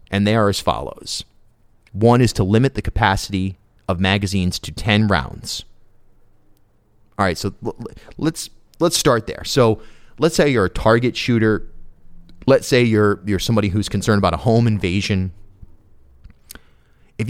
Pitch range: 95-125 Hz